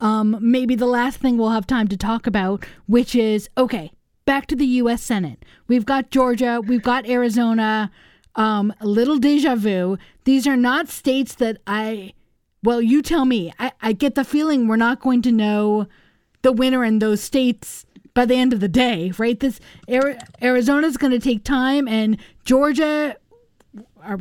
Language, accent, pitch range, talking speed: English, American, 210-255 Hz, 175 wpm